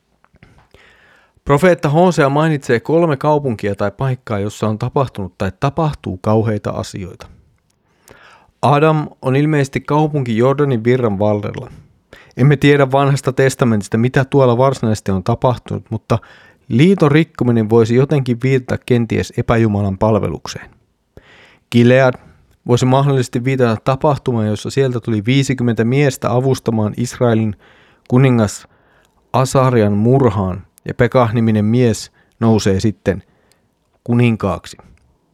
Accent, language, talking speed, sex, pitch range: native, Finnish, 100 wpm, male, 110-135 Hz